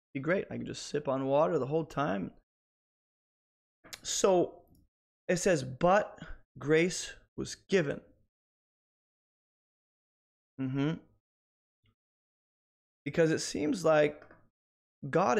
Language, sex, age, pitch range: English, male, 20-39, 130-170 Hz